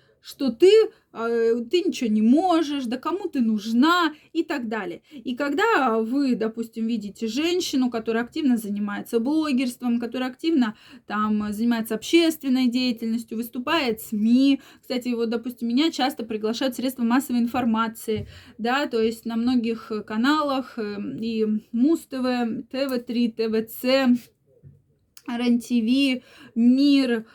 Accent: native